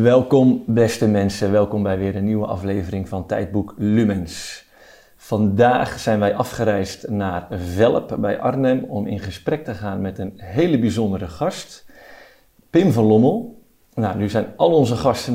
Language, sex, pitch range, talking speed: Dutch, male, 100-120 Hz, 155 wpm